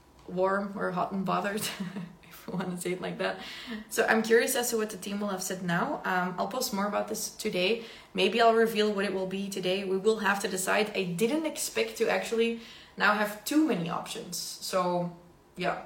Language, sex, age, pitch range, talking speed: English, female, 20-39, 180-210 Hz, 215 wpm